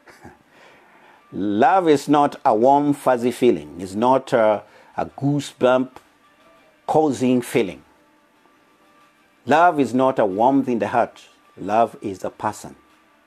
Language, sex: English, male